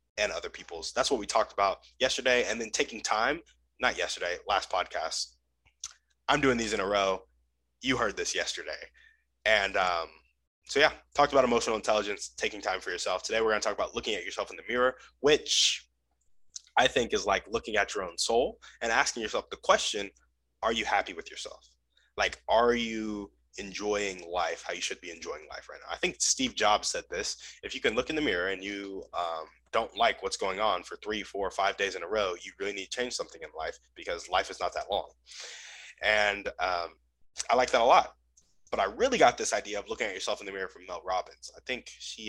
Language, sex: English, male